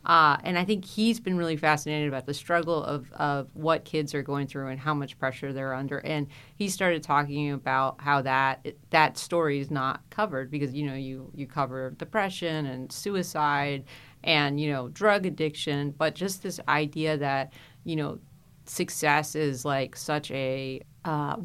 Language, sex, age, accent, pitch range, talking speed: English, female, 40-59, American, 140-155 Hz, 175 wpm